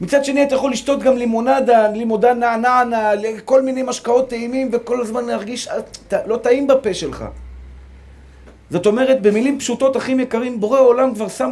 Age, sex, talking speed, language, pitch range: 40-59, male, 160 wpm, Hebrew, 205-260 Hz